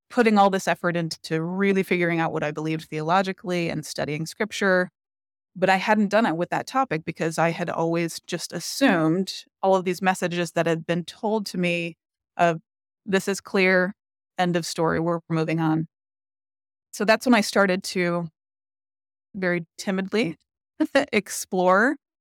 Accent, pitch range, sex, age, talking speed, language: American, 165-195 Hz, female, 20-39, 155 wpm, English